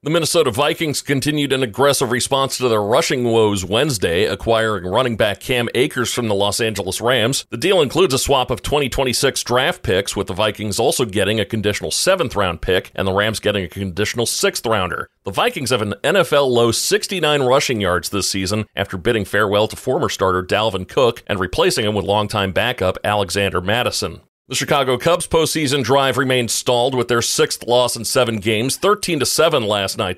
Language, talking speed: English, 185 wpm